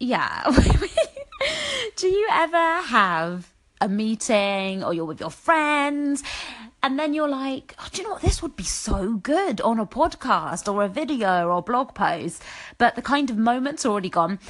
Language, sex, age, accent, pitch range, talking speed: English, female, 30-49, British, 185-270 Hz, 175 wpm